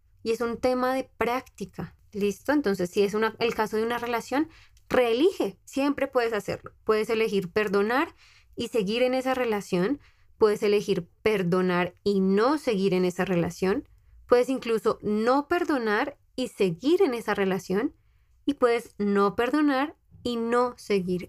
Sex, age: female, 20-39